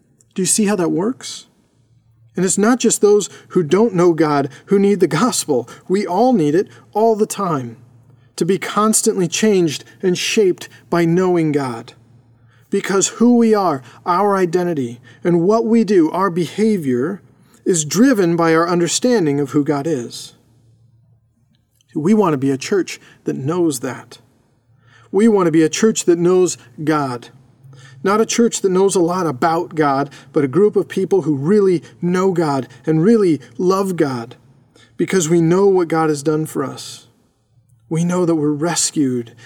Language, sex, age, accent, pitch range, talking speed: English, male, 40-59, American, 135-180 Hz, 165 wpm